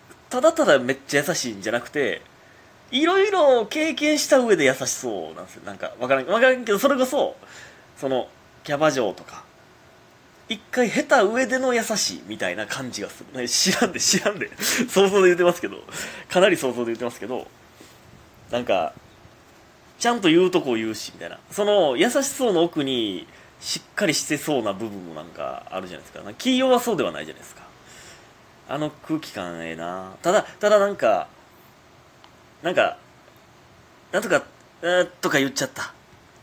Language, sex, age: Japanese, male, 30-49